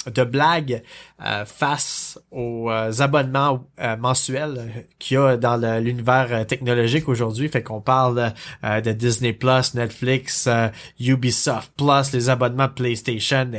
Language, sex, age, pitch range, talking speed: French, male, 20-39, 125-165 Hz, 110 wpm